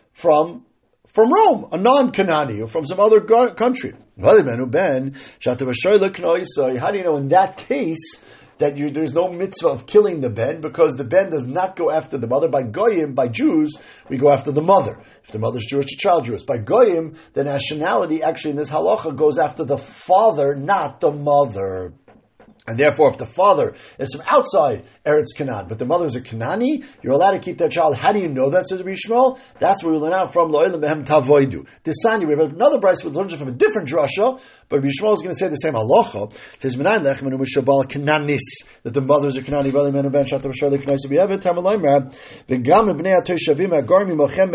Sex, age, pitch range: male, 50-69, 140-190 Hz